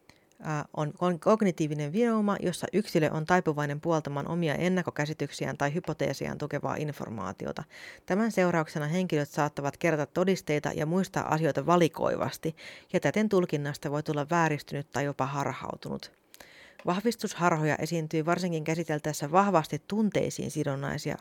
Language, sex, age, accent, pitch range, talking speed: Finnish, female, 30-49, native, 150-180 Hz, 115 wpm